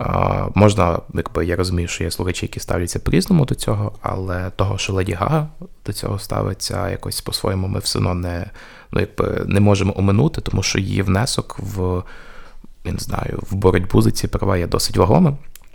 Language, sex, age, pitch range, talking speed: Ukrainian, male, 20-39, 90-110 Hz, 175 wpm